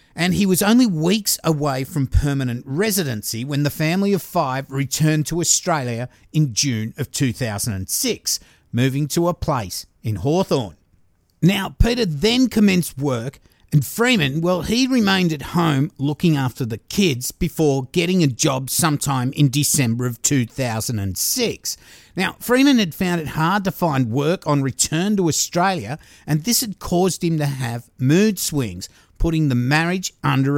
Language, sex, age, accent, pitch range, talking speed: English, male, 50-69, Australian, 130-185 Hz, 155 wpm